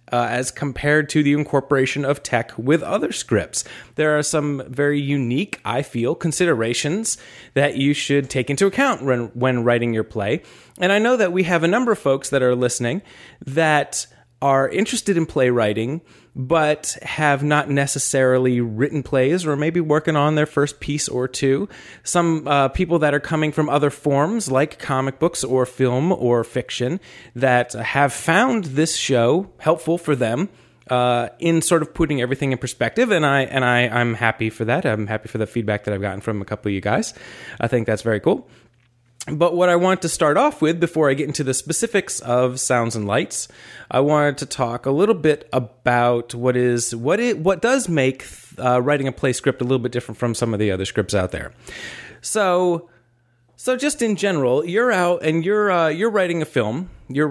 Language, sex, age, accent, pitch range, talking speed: English, male, 30-49, American, 120-160 Hz, 195 wpm